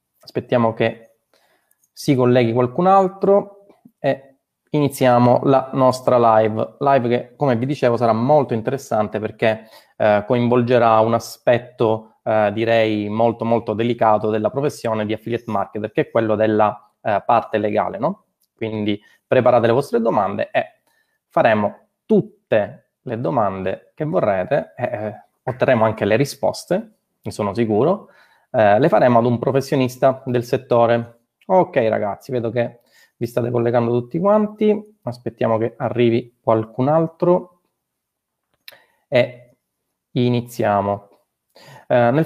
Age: 20-39